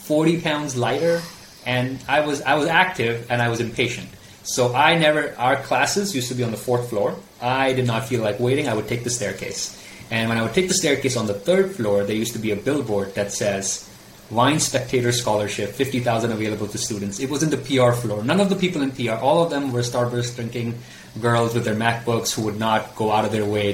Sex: male